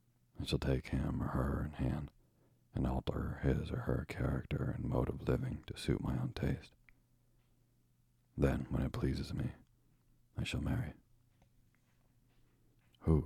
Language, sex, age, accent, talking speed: English, male, 40-59, American, 145 wpm